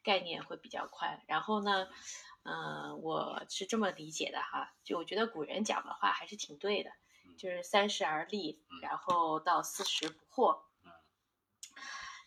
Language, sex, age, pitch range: Chinese, female, 20-39, 175-225 Hz